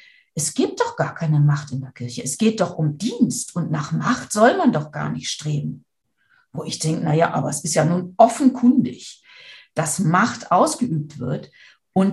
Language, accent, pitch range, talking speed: German, German, 170-240 Hz, 195 wpm